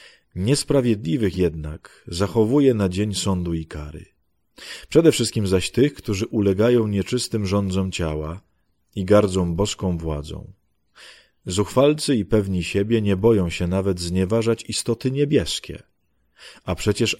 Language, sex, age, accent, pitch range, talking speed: Polish, male, 30-49, native, 90-115 Hz, 120 wpm